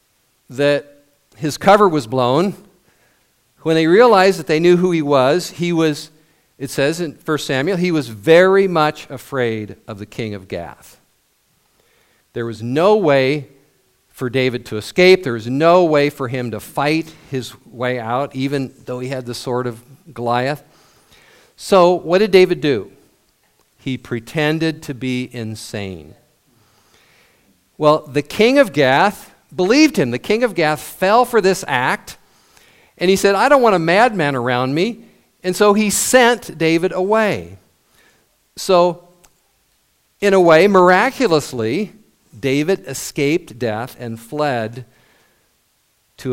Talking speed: 140 wpm